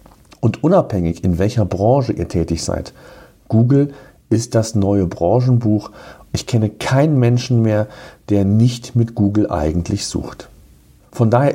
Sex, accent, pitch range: male, German, 100-130 Hz